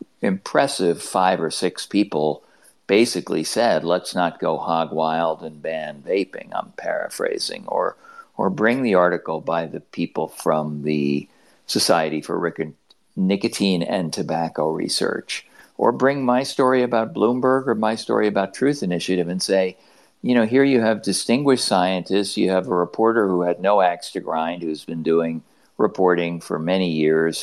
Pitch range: 80-110 Hz